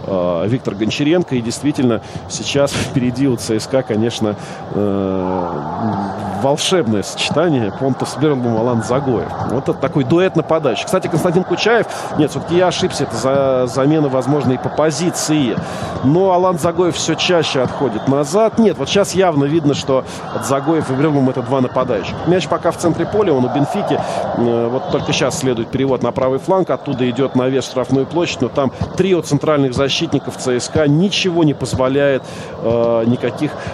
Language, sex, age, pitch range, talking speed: Russian, male, 40-59, 125-175 Hz, 160 wpm